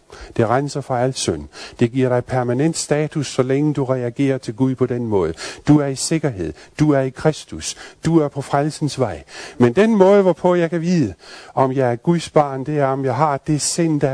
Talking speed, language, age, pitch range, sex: 220 wpm, Danish, 50-69, 120-150 Hz, male